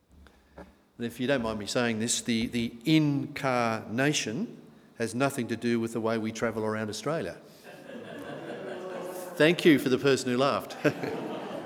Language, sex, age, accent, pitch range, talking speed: English, male, 50-69, Australian, 120-180 Hz, 150 wpm